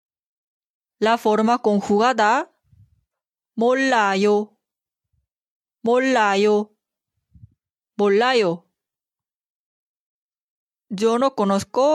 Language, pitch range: Korean, 185-240 Hz